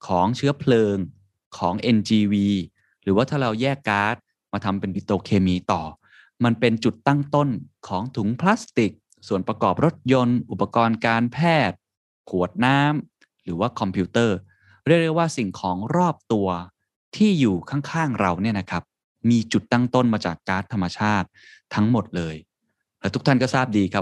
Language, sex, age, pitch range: Thai, male, 20-39, 95-125 Hz